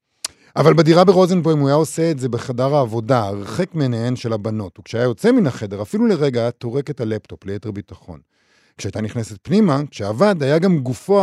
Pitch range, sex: 110-145 Hz, male